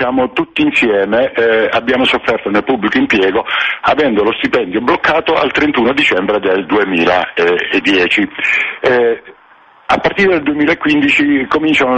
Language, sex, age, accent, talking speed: Italian, male, 50-69, native, 115 wpm